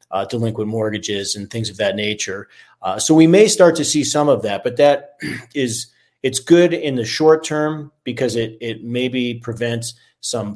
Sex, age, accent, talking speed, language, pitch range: male, 40-59, American, 190 wpm, English, 110-130 Hz